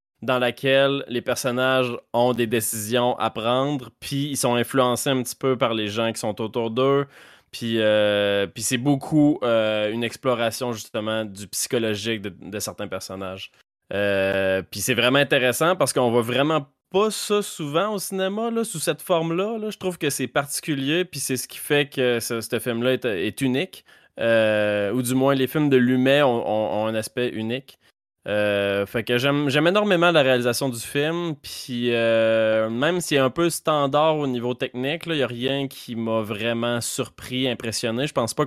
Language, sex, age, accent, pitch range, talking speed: French, male, 20-39, Canadian, 110-140 Hz, 185 wpm